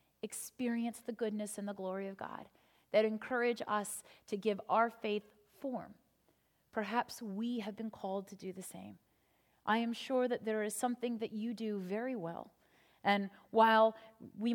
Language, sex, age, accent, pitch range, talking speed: English, female, 30-49, American, 195-230 Hz, 165 wpm